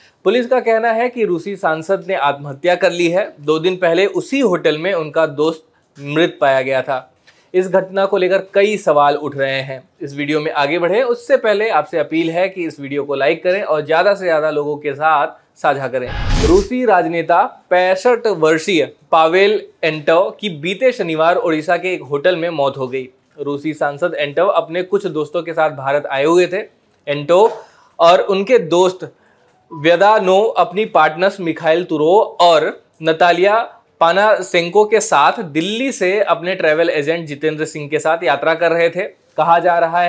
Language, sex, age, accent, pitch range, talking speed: Hindi, male, 20-39, native, 155-200 Hz, 175 wpm